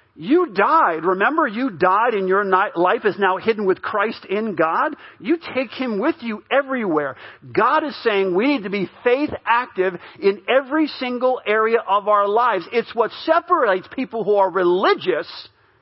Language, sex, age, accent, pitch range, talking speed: English, male, 50-69, American, 190-270 Hz, 165 wpm